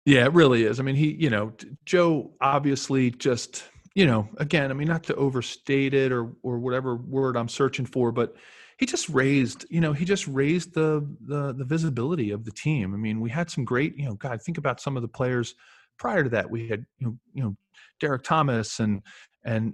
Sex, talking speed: male, 220 wpm